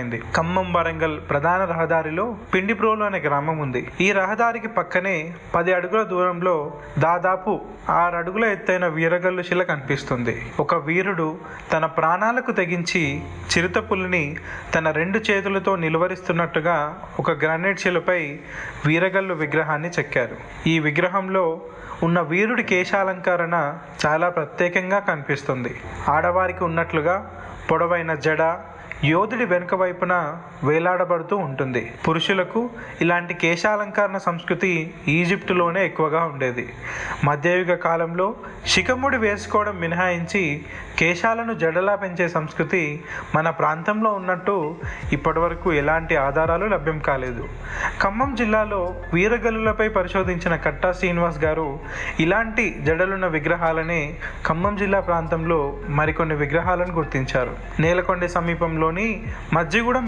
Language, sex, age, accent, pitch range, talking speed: Telugu, male, 30-49, native, 160-190 Hz, 100 wpm